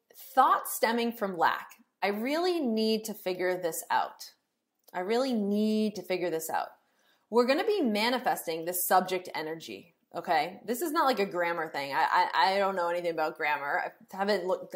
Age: 20-39